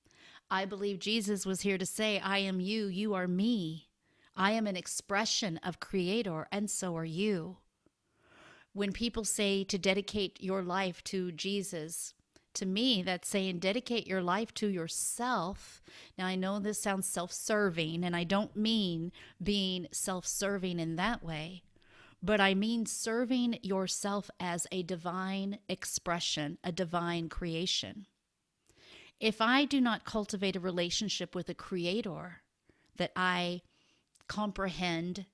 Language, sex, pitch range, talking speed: English, female, 175-205 Hz, 140 wpm